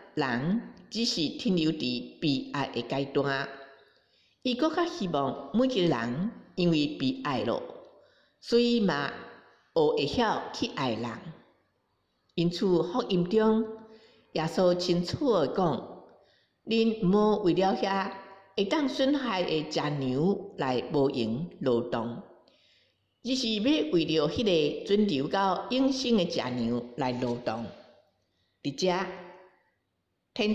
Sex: female